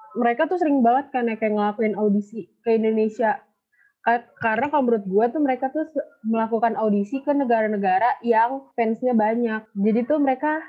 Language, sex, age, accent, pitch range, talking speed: Indonesian, female, 20-39, native, 215-245 Hz, 150 wpm